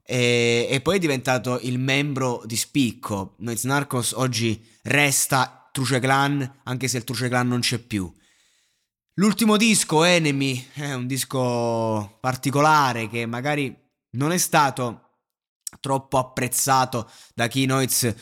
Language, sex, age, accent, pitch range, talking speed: Italian, male, 20-39, native, 115-140 Hz, 130 wpm